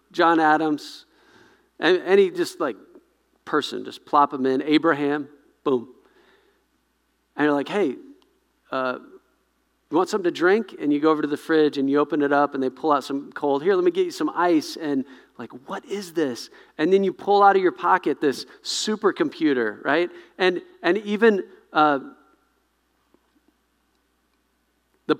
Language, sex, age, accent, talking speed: English, male, 40-59, American, 165 wpm